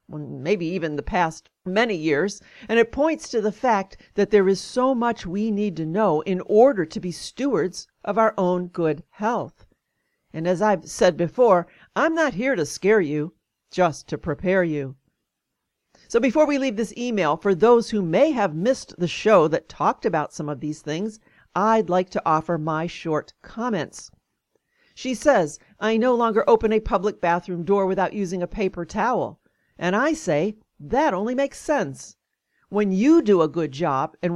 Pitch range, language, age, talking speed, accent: 170-220 Hz, English, 50-69, 180 wpm, American